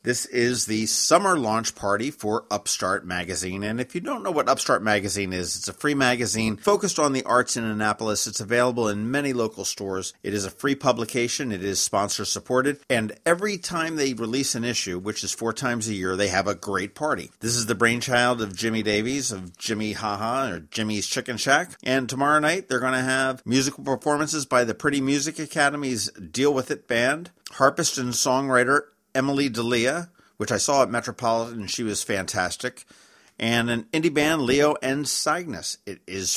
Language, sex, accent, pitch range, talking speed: English, male, American, 105-140 Hz, 190 wpm